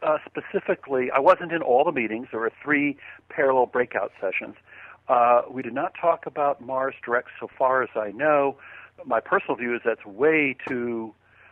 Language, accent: English, American